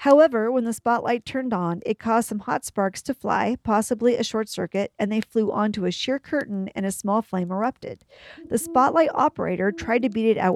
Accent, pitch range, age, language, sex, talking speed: American, 195-260 Hz, 50-69, English, female, 210 wpm